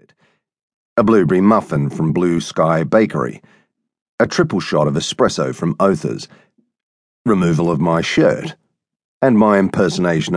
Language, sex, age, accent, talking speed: English, male, 40-59, Australian, 120 wpm